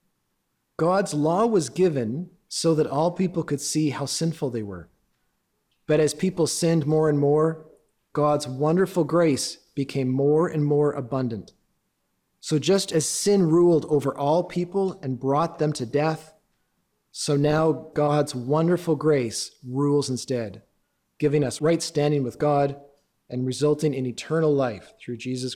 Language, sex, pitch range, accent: English, male, 130-165 Hz, American